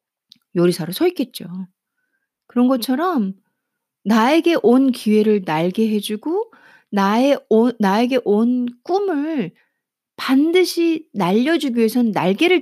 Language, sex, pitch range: Korean, female, 200-310 Hz